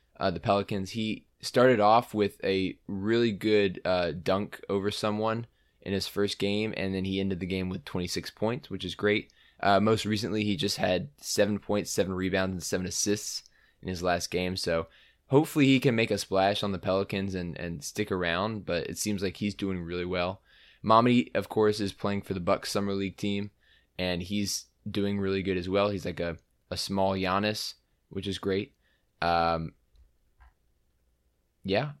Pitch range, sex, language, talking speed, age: 90-105 Hz, male, English, 185 wpm, 20-39